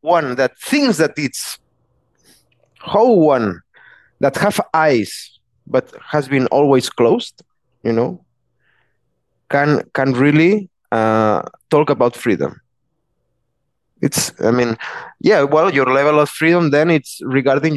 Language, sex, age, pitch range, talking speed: English, male, 20-39, 125-165 Hz, 120 wpm